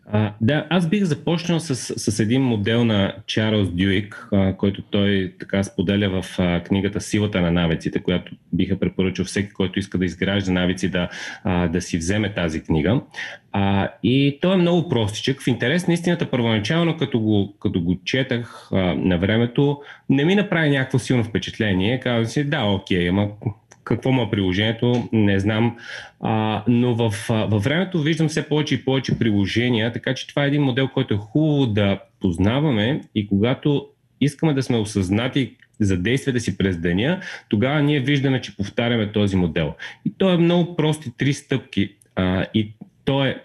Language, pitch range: Bulgarian, 100-135 Hz